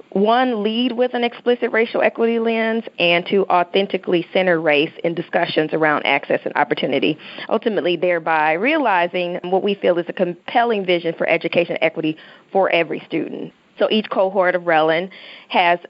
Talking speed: 155 wpm